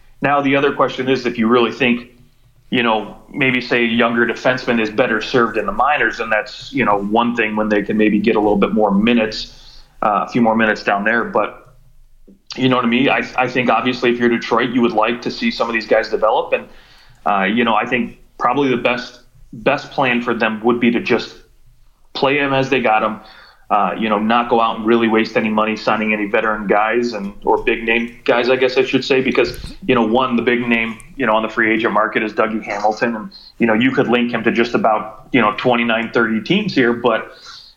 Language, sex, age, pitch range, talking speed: English, male, 30-49, 110-125 Hz, 235 wpm